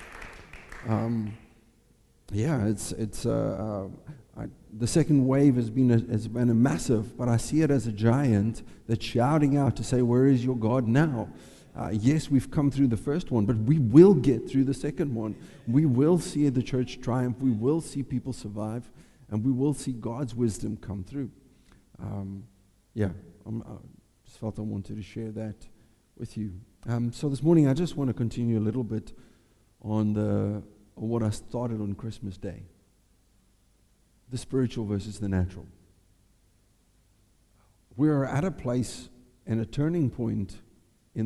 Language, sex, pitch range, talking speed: English, male, 105-130 Hz, 165 wpm